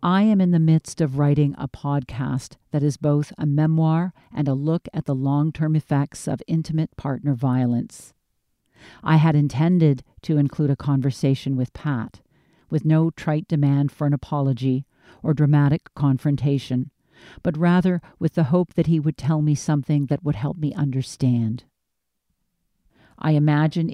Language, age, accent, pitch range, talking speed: English, 50-69, American, 135-155 Hz, 155 wpm